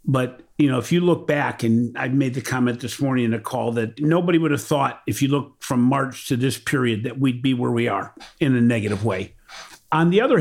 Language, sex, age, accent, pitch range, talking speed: English, male, 50-69, American, 120-155 Hz, 250 wpm